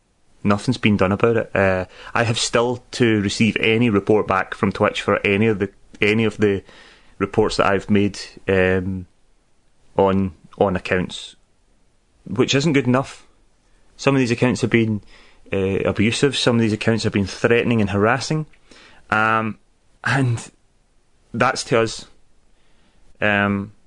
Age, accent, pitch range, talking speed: 30-49, British, 100-125 Hz, 145 wpm